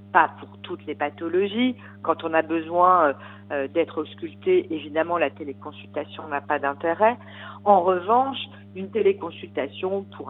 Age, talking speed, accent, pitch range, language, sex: 50-69, 140 wpm, French, 115-185 Hz, French, female